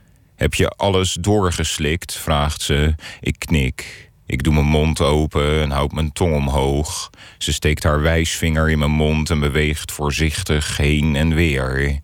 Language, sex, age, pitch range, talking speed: Dutch, male, 40-59, 70-85 Hz, 155 wpm